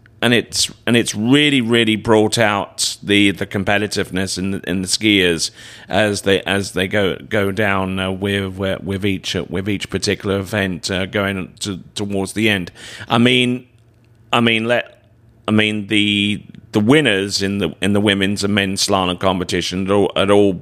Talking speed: 175 wpm